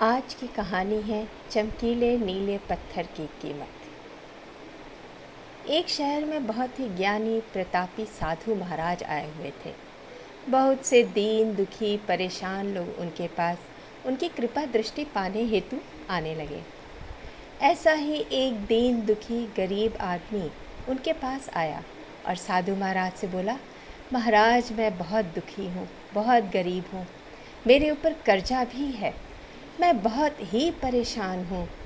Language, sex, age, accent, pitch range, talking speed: Hindi, female, 50-69, native, 190-250 Hz, 130 wpm